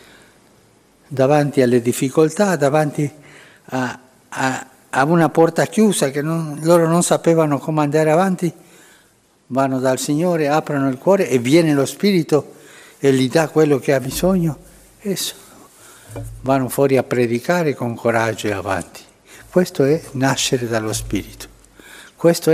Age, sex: 60-79, male